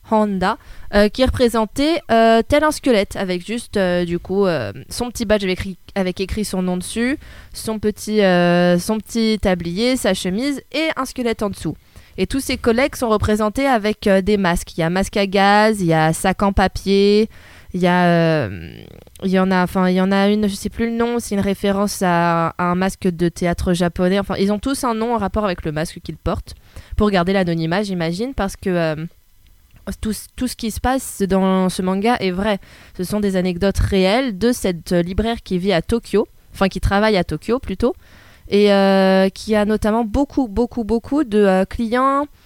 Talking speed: 205 wpm